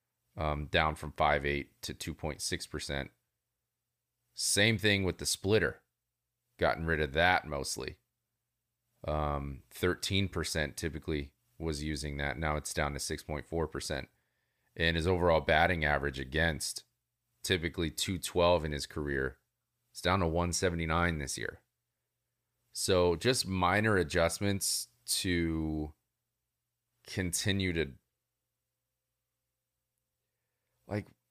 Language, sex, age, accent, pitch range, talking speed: English, male, 30-49, American, 75-120 Hz, 105 wpm